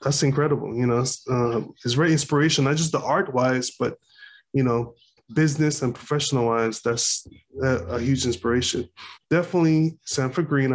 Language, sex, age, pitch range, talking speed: English, male, 20-39, 120-140 Hz, 155 wpm